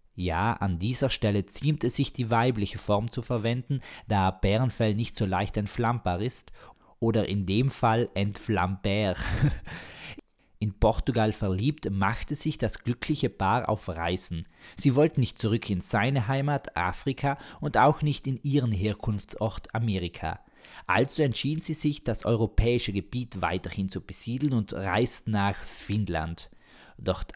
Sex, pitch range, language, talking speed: male, 100-130 Hz, German, 140 wpm